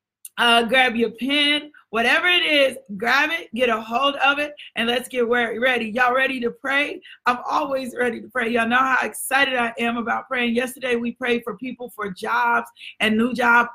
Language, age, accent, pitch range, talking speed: English, 40-59, American, 230-270 Hz, 195 wpm